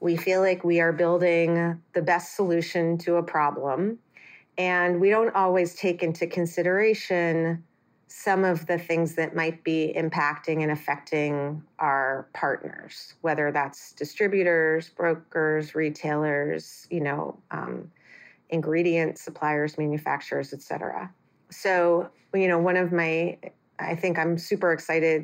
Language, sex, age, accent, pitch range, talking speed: English, female, 30-49, American, 155-175 Hz, 130 wpm